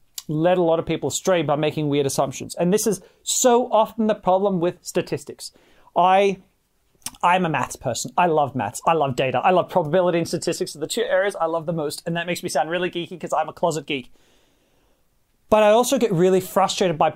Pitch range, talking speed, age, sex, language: 150-190 Hz, 220 wpm, 30-49, male, English